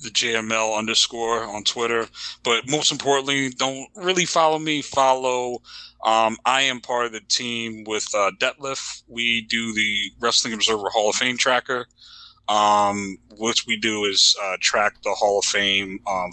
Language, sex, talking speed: English, male, 160 wpm